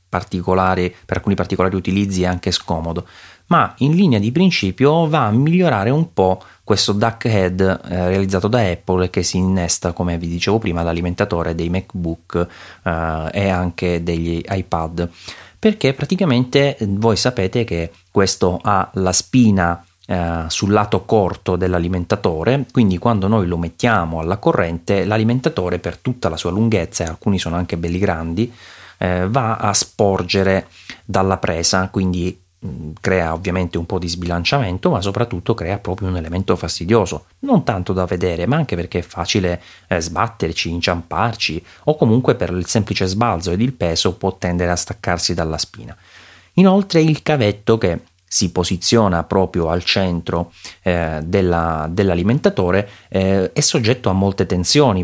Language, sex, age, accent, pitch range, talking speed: Italian, male, 30-49, native, 90-110 Hz, 145 wpm